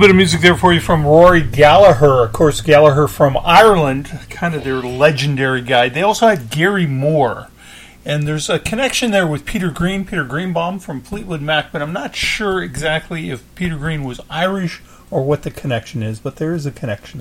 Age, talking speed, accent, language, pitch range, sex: 40-59, 200 wpm, American, English, 135-195 Hz, male